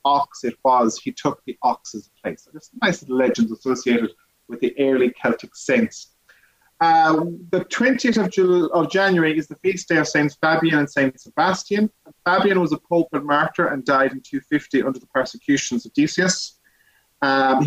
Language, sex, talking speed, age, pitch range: English, male, 180 wpm, 30-49, 130-170 Hz